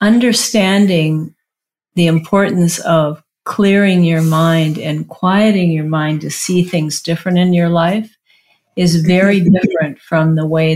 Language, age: English, 50-69